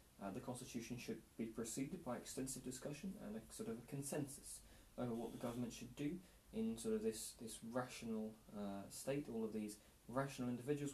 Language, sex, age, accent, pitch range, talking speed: English, male, 20-39, British, 115-140 Hz, 185 wpm